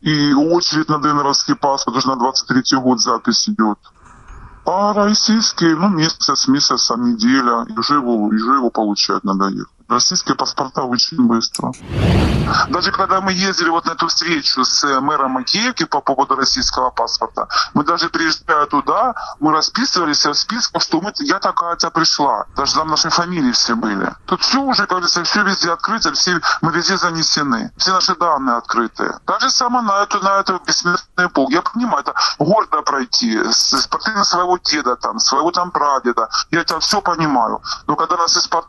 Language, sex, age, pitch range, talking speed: Russian, female, 20-39, 145-195 Hz, 165 wpm